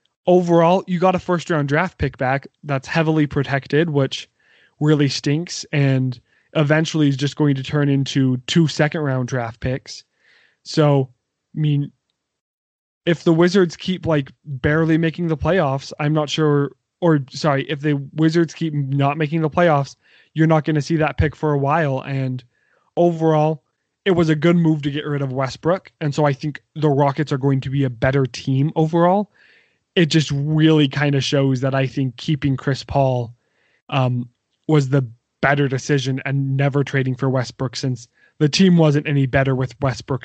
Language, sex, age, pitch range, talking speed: English, male, 20-39, 130-155 Hz, 175 wpm